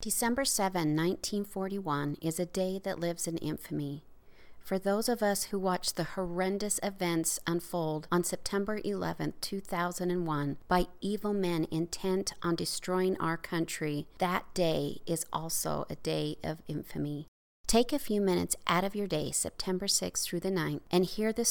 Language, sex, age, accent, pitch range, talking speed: English, female, 40-59, American, 175-205 Hz, 155 wpm